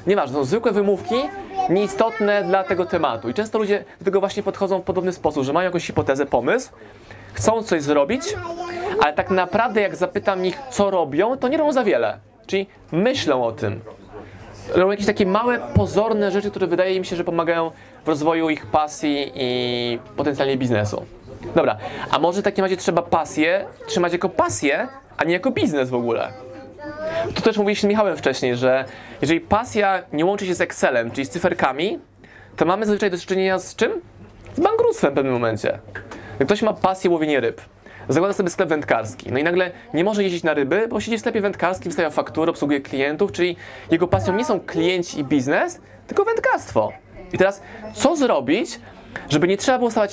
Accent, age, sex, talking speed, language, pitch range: native, 20-39, male, 185 wpm, Polish, 145-210 Hz